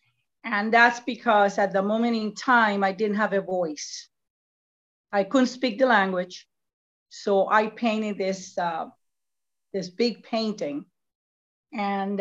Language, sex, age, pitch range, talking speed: English, female, 40-59, 195-235 Hz, 130 wpm